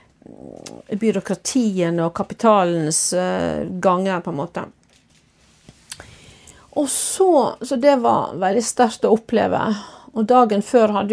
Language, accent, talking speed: Danish, Swedish, 95 wpm